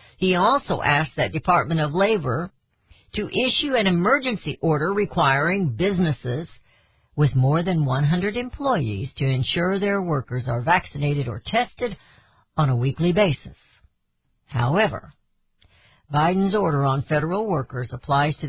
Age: 60-79